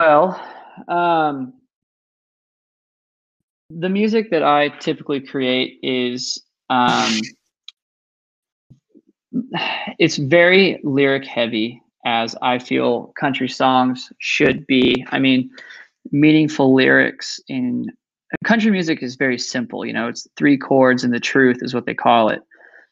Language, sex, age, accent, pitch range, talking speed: English, male, 20-39, American, 125-145 Hz, 115 wpm